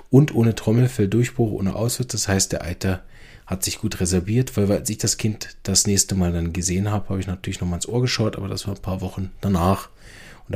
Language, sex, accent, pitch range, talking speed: German, male, German, 90-110 Hz, 235 wpm